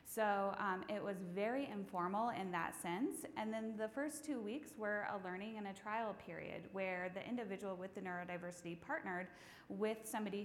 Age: 20-39